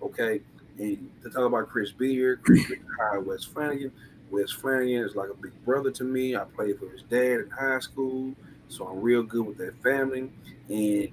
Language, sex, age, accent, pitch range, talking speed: English, male, 30-49, American, 105-130 Hz, 195 wpm